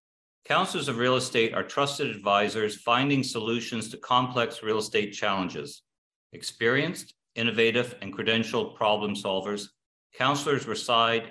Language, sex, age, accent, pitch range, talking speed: English, male, 50-69, American, 105-125 Hz, 115 wpm